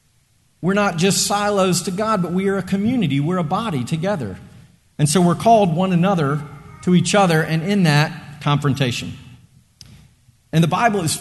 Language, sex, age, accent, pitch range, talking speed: English, male, 40-59, American, 130-175 Hz, 170 wpm